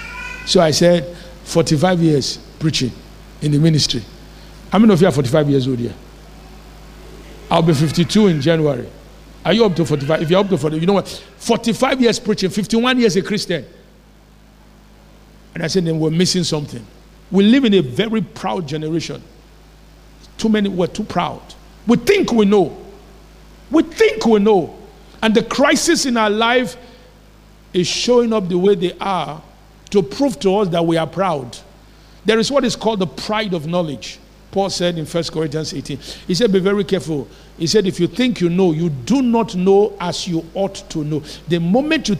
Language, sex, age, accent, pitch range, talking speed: English, male, 50-69, Nigerian, 165-220 Hz, 185 wpm